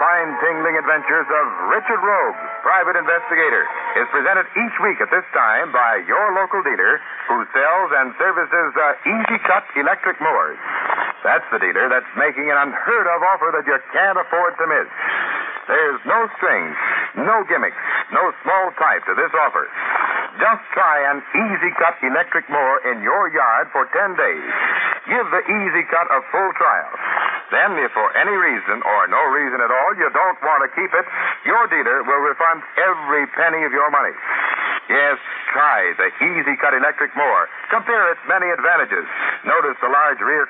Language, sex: English, male